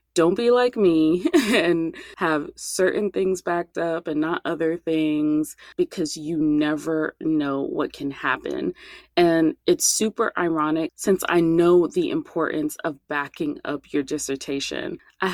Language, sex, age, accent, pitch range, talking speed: English, female, 20-39, American, 150-215 Hz, 140 wpm